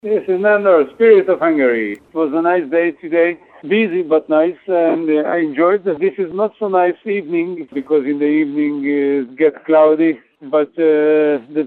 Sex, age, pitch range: male, 60-79, 155-190 Hz